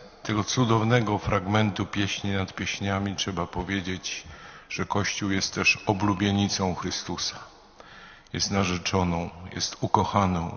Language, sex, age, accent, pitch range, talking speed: Polish, male, 50-69, native, 95-110 Hz, 100 wpm